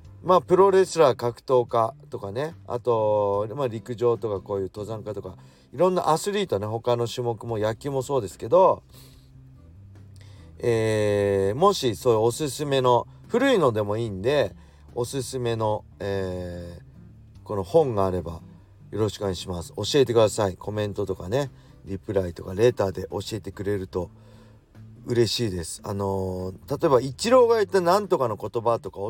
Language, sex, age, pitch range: Japanese, male, 40-59, 95-125 Hz